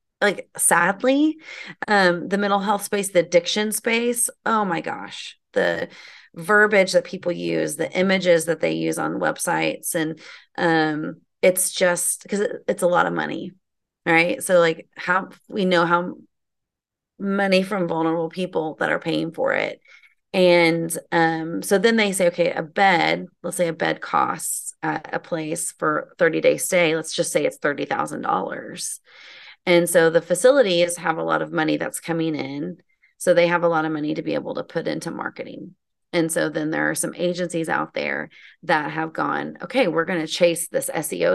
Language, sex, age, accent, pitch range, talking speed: English, female, 30-49, American, 165-195 Hz, 180 wpm